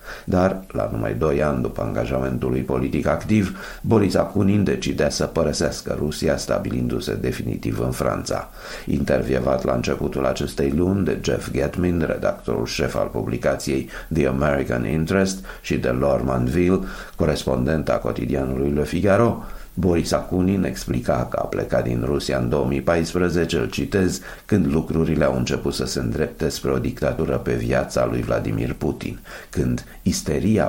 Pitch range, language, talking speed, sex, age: 65-85 Hz, Romanian, 140 wpm, male, 50-69